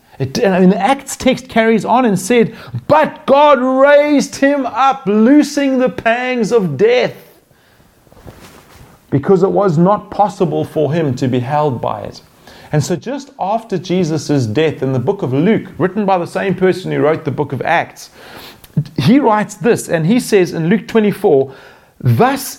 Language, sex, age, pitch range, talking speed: English, male, 40-59, 165-240 Hz, 165 wpm